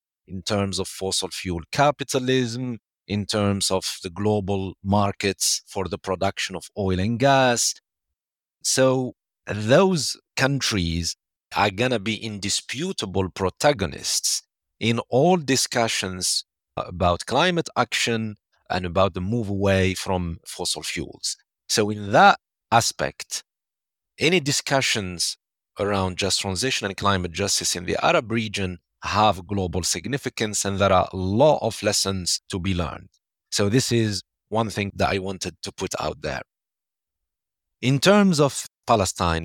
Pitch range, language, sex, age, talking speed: 90-110 Hz, English, male, 50-69, 130 wpm